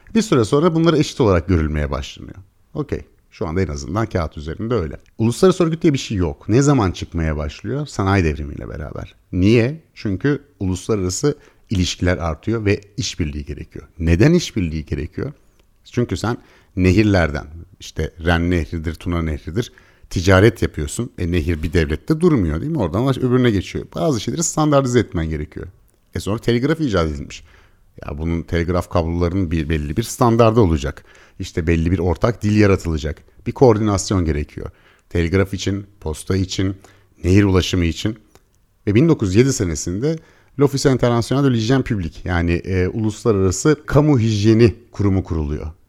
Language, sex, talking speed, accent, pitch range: Turkish, male, 145 wpm, native, 85-115 Hz